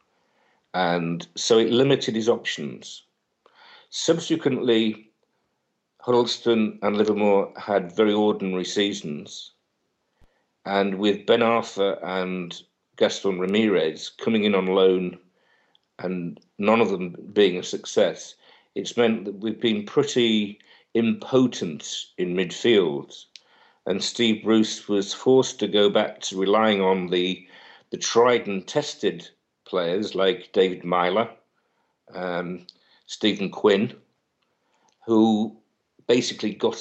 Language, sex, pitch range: English, male, 95-125 Hz